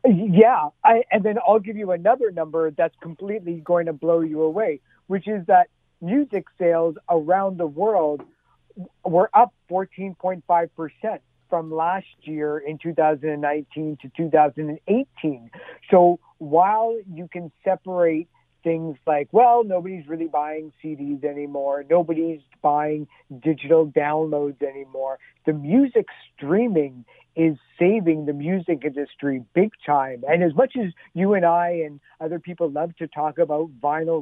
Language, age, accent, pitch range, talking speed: English, 50-69, American, 150-180 Hz, 135 wpm